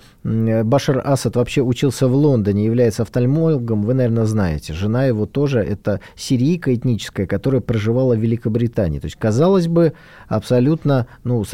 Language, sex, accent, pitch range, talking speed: Russian, male, native, 110-145 Hz, 145 wpm